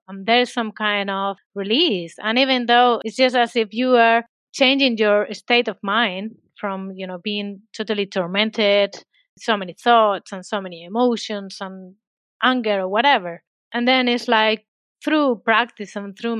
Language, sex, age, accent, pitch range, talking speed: English, female, 30-49, Spanish, 195-240 Hz, 165 wpm